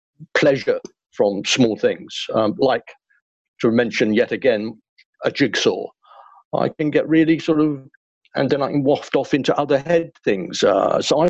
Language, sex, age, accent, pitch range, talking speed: English, male, 50-69, British, 115-165 Hz, 165 wpm